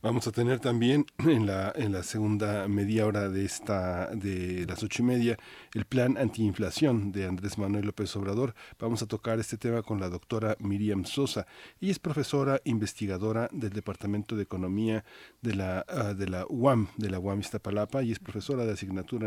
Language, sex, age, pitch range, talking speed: Spanish, male, 40-59, 100-115 Hz, 170 wpm